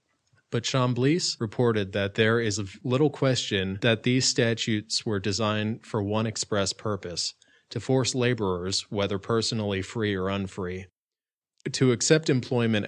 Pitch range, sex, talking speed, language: 100-120 Hz, male, 125 wpm, English